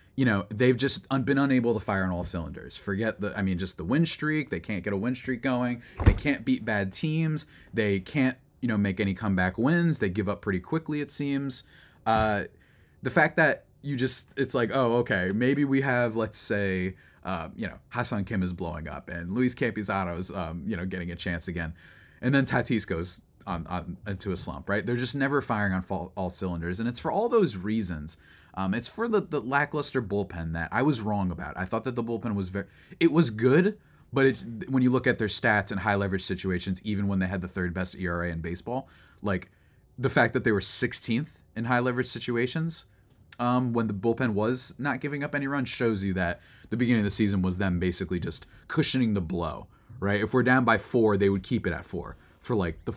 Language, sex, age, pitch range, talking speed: English, male, 30-49, 95-130 Hz, 220 wpm